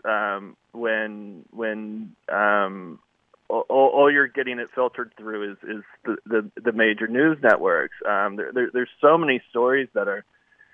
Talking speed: 155 wpm